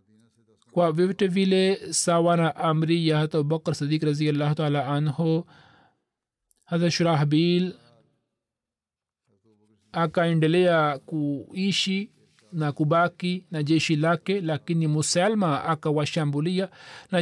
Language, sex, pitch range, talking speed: Swahili, male, 155-190 Hz, 90 wpm